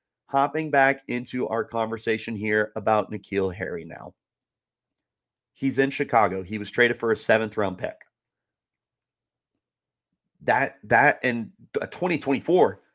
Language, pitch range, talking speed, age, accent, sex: English, 110-140 Hz, 115 wpm, 30-49, American, male